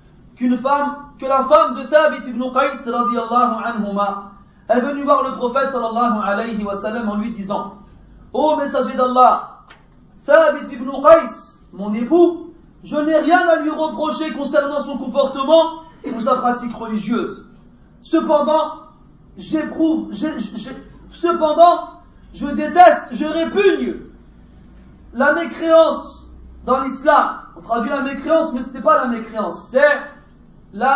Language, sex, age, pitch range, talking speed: French, male, 40-59, 250-310 Hz, 130 wpm